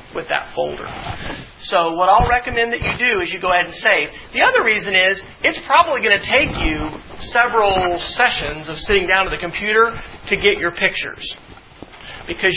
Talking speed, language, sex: 185 wpm, English, male